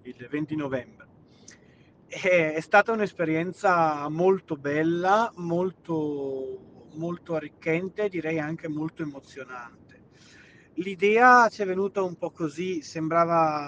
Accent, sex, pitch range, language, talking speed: native, male, 150-175 Hz, Italian, 100 wpm